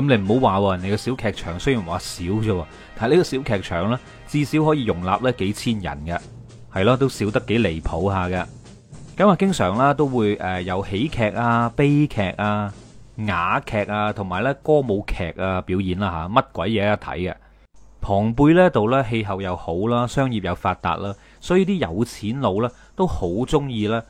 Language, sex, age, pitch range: Chinese, male, 30-49, 95-135 Hz